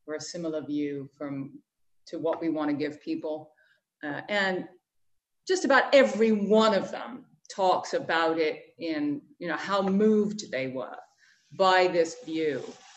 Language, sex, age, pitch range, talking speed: English, female, 40-59, 165-215 Hz, 155 wpm